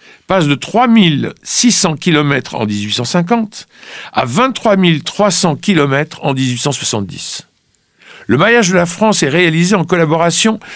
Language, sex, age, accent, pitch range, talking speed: French, male, 60-79, French, 140-185 Hz, 110 wpm